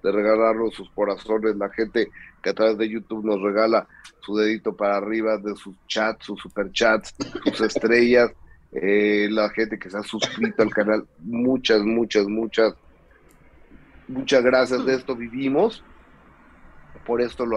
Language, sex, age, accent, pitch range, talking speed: Spanish, male, 30-49, Mexican, 110-130 Hz, 150 wpm